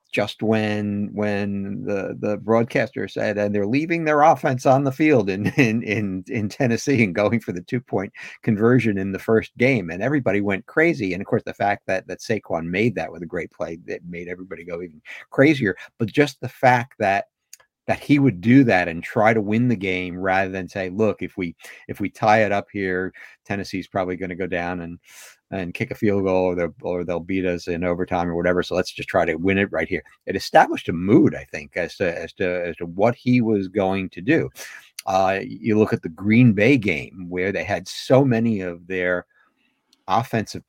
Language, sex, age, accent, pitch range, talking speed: English, male, 50-69, American, 90-115 Hz, 215 wpm